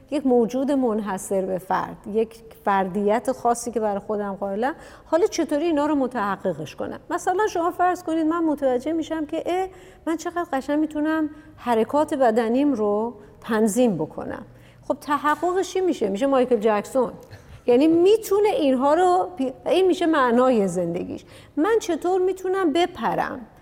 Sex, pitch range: female, 230-320 Hz